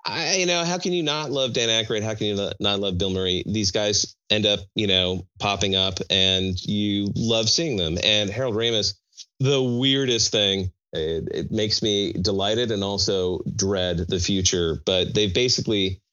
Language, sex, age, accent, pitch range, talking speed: English, male, 30-49, American, 95-125 Hz, 180 wpm